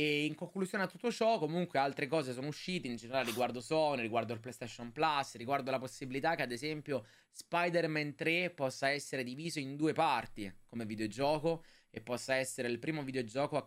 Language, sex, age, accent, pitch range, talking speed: Italian, male, 20-39, native, 110-150 Hz, 185 wpm